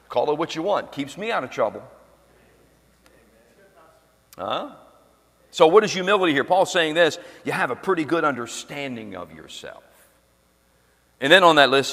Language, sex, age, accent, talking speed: English, male, 50-69, American, 160 wpm